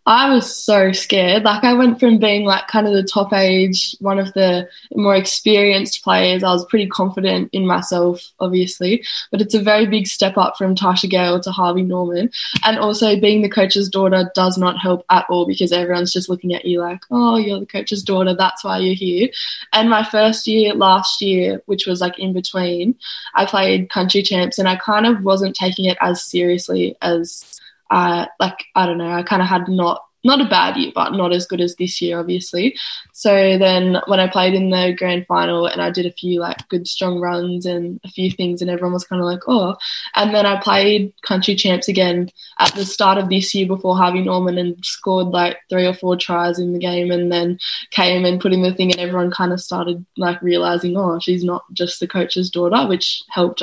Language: English